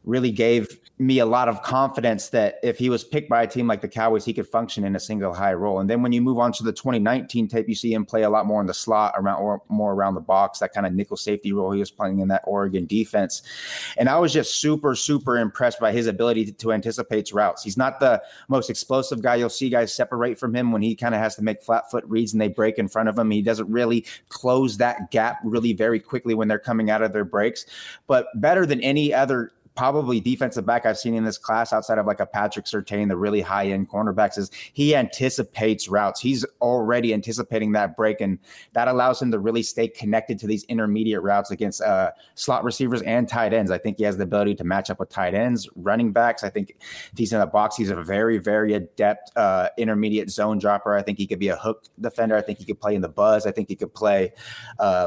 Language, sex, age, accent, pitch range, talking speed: English, male, 30-49, American, 105-120 Hz, 250 wpm